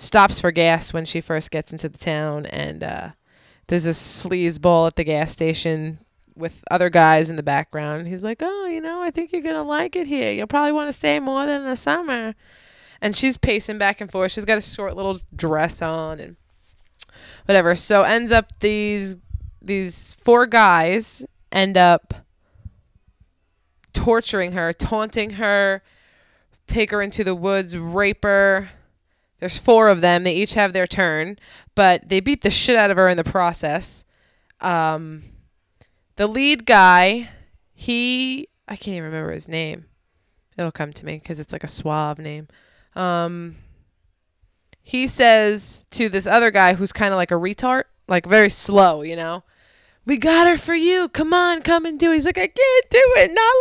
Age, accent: 20-39, American